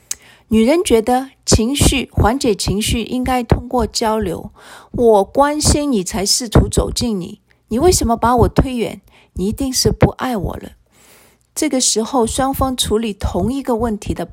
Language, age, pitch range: Chinese, 50-69, 205-265 Hz